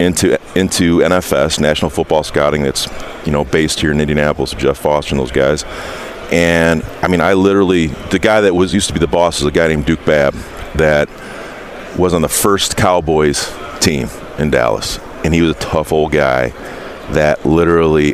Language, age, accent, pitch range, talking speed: English, 40-59, American, 75-90 Hz, 185 wpm